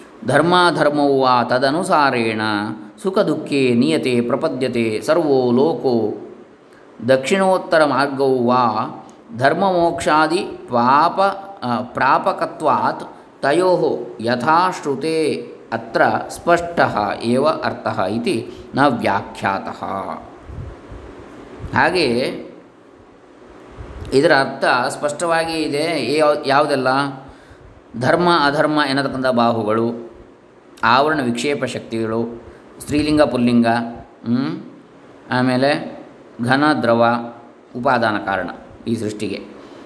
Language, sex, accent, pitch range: Kannada, male, native, 120-150 Hz